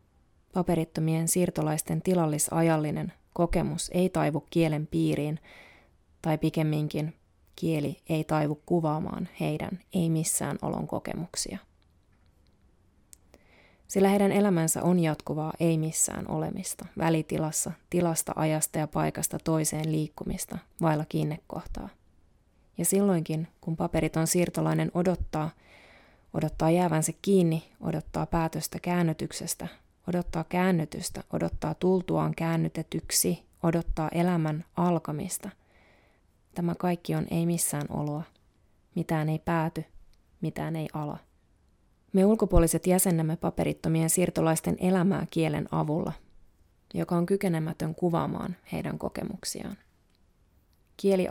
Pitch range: 150-175 Hz